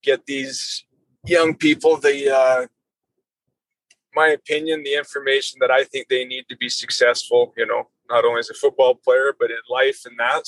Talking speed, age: 180 wpm, 20-39